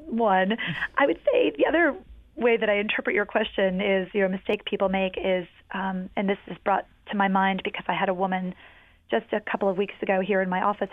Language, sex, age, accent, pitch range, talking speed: English, female, 30-49, American, 185-215 Hz, 235 wpm